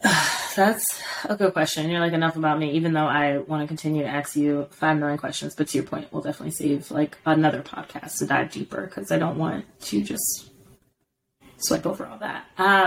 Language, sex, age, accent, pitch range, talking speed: English, female, 20-39, American, 165-195 Hz, 205 wpm